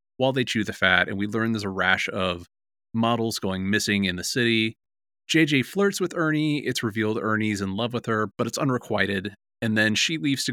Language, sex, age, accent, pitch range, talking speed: English, male, 30-49, American, 95-115 Hz, 210 wpm